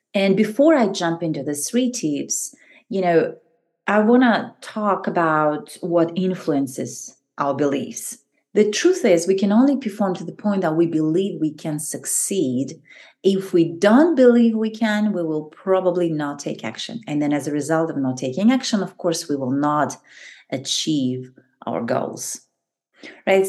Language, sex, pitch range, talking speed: English, female, 160-215 Hz, 165 wpm